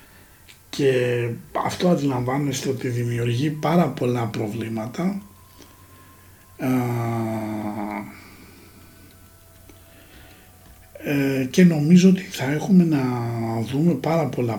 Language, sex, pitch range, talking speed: Greek, male, 105-135 Hz, 70 wpm